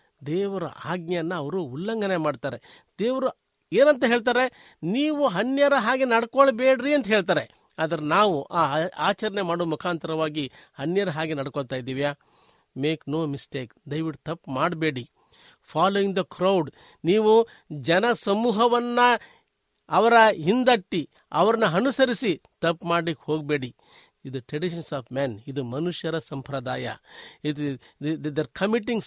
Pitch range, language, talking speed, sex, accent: 155-230 Hz, Kannada, 105 wpm, male, native